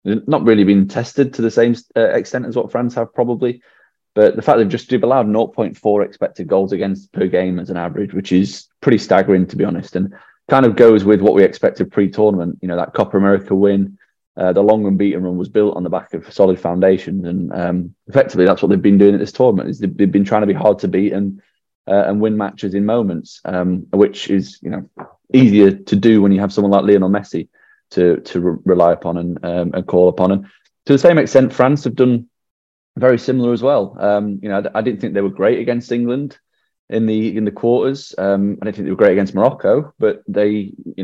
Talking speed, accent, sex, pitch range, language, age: 235 wpm, British, male, 95-110 Hz, English, 20-39